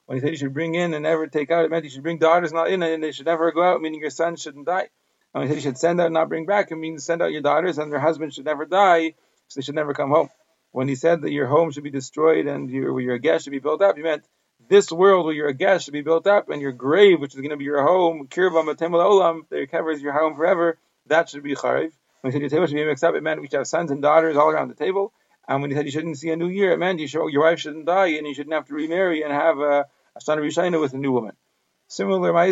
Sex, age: male, 40-59